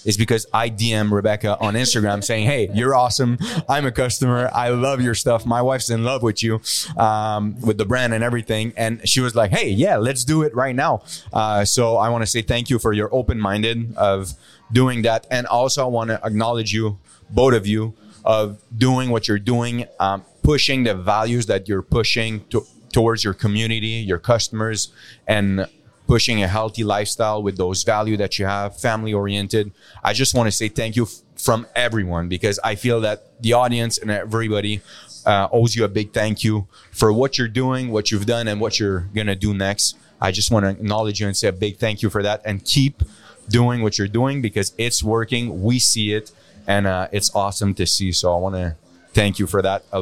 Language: French